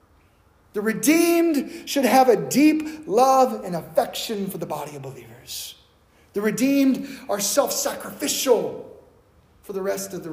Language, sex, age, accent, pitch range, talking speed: English, male, 30-49, American, 200-290 Hz, 135 wpm